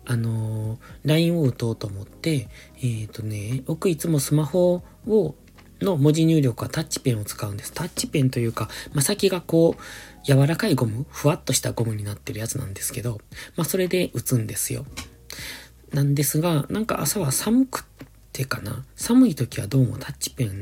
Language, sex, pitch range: Japanese, male, 115-150 Hz